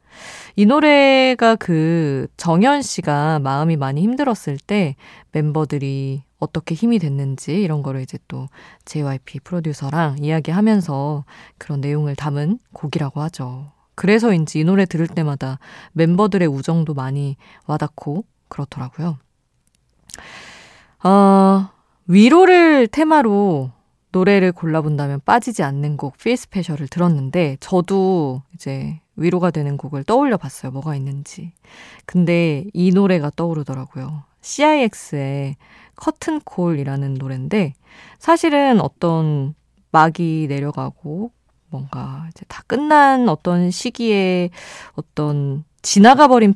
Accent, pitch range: native, 145-200 Hz